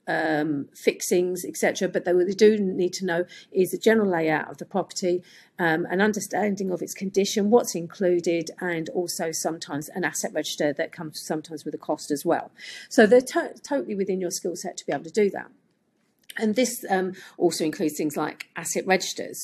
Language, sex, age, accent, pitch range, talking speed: English, female, 40-59, British, 160-200 Hz, 190 wpm